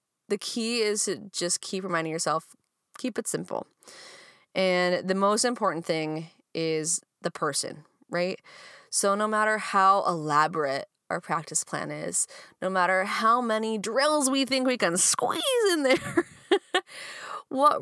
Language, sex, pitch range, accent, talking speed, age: English, female, 175-240 Hz, American, 140 wpm, 20-39